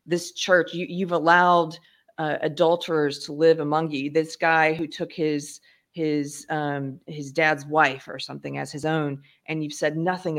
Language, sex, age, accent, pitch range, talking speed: English, female, 40-59, American, 150-185 Hz, 175 wpm